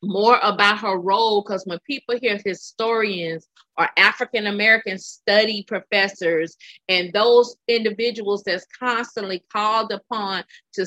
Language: English